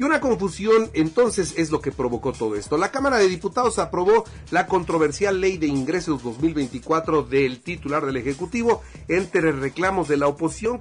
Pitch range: 145-195 Hz